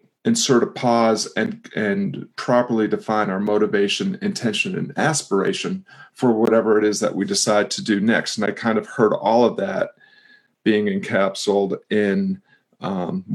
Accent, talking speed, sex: American, 155 wpm, male